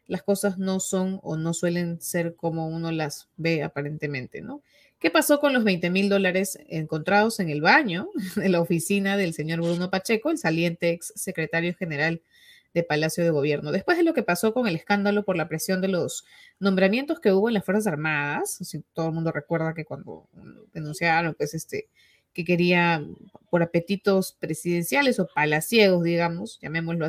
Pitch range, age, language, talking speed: 165-215 Hz, 30-49, Spanish, 175 wpm